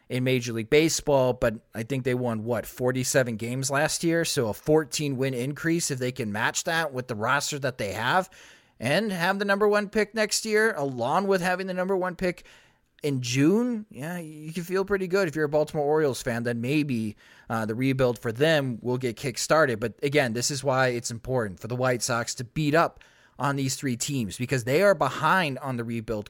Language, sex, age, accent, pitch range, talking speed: English, male, 30-49, American, 120-165 Hz, 215 wpm